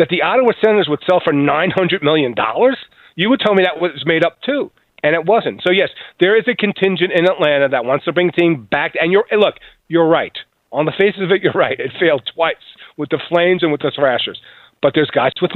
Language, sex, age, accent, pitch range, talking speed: English, male, 40-59, American, 145-185 Hz, 240 wpm